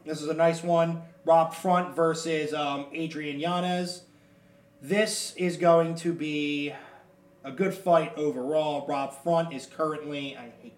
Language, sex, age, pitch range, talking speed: English, male, 20-39, 145-175 Hz, 145 wpm